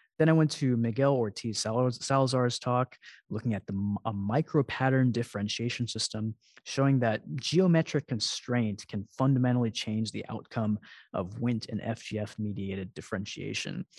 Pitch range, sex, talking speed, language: 105-130 Hz, male, 135 wpm, English